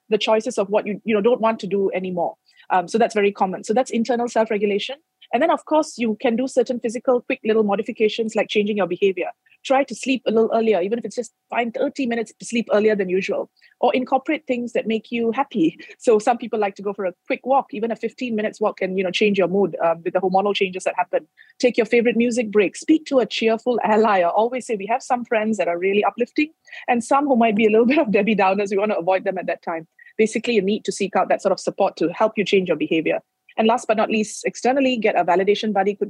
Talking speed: 265 wpm